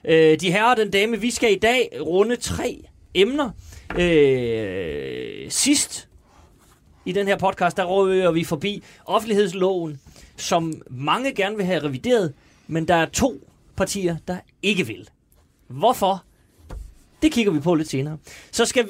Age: 30-49